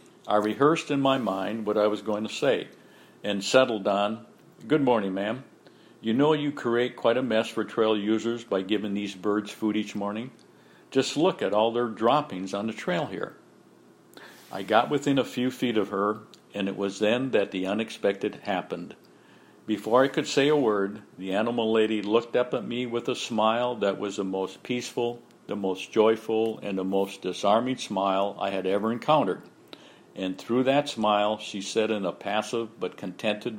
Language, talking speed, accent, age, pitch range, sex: English, 185 wpm, American, 60-79, 100-115 Hz, male